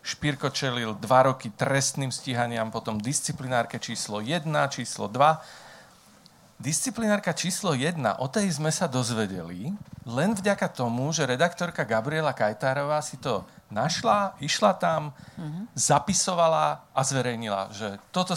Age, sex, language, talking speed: 40-59, male, Slovak, 120 wpm